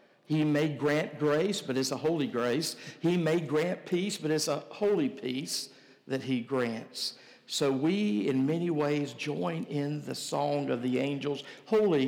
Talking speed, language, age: 170 wpm, English, 60-79